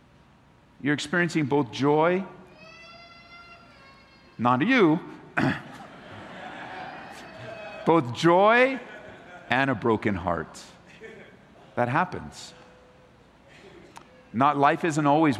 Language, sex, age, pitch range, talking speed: English, male, 50-69, 110-145 Hz, 70 wpm